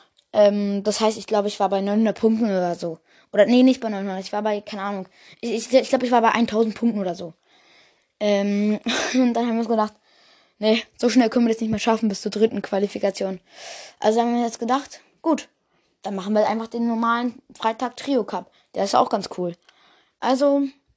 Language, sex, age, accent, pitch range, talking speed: German, female, 20-39, German, 195-240 Hz, 205 wpm